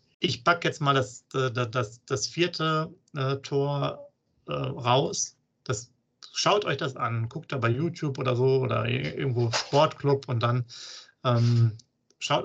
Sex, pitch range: male, 125-155 Hz